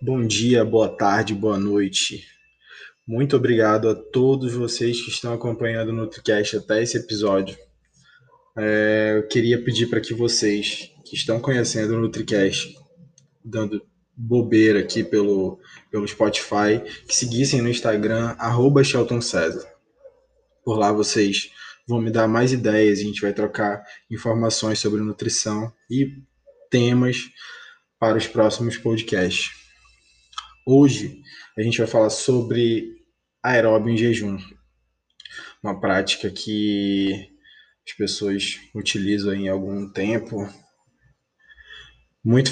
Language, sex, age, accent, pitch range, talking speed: Portuguese, male, 20-39, Brazilian, 105-120 Hz, 115 wpm